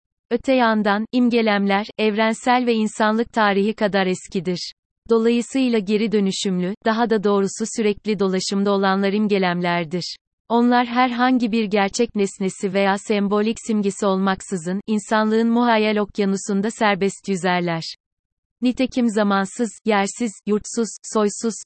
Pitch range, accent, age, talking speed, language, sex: 195-220 Hz, native, 30-49, 105 wpm, Turkish, female